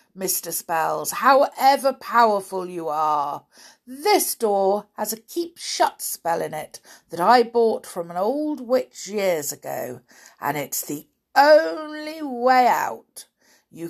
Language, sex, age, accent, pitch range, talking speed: English, female, 50-69, British, 170-260 Hz, 135 wpm